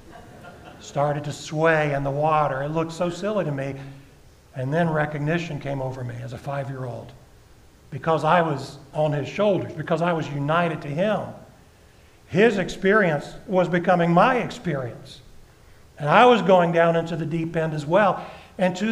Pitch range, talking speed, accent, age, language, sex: 145-185 Hz, 165 wpm, American, 50-69, English, male